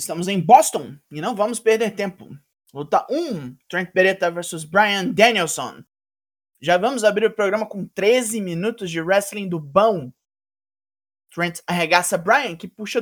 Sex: male